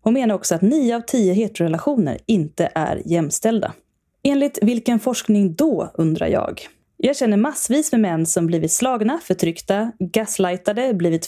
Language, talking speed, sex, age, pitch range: Swedish, 150 wpm, female, 20-39, 175-235 Hz